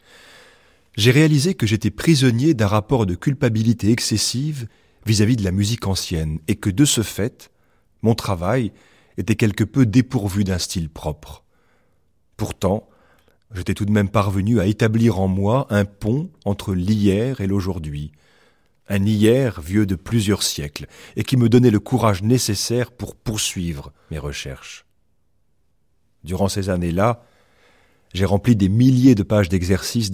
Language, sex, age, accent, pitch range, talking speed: French, male, 40-59, French, 85-110 Hz, 145 wpm